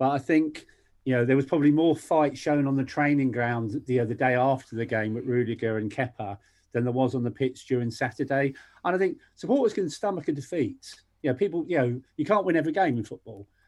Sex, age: male, 40-59